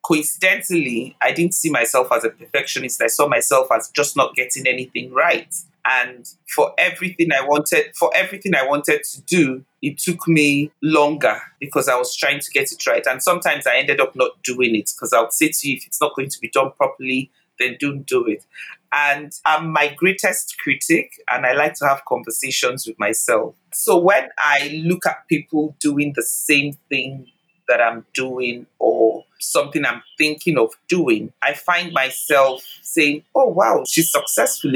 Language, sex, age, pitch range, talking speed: English, male, 30-49, 135-175 Hz, 180 wpm